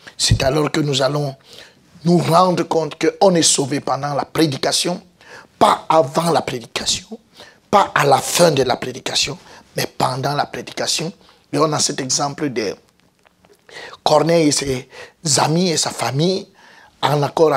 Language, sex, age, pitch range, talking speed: French, male, 50-69, 140-165 Hz, 150 wpm